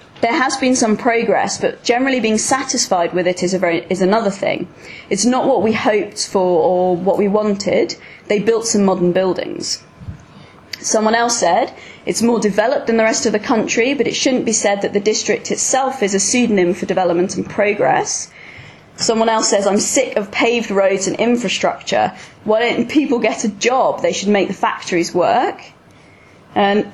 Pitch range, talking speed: 195-240 Hz, 180 wpm